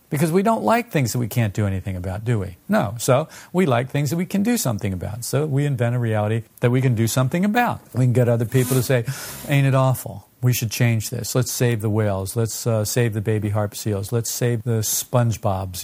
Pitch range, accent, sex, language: 110-135 Hz, American, male, English